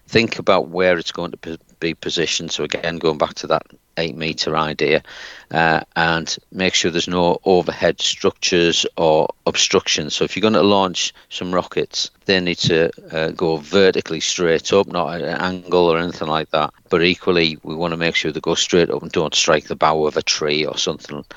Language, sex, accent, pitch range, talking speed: English, male, British, 80-95 Hz, 200 wpm